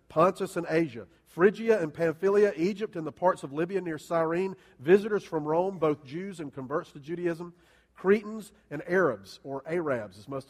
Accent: American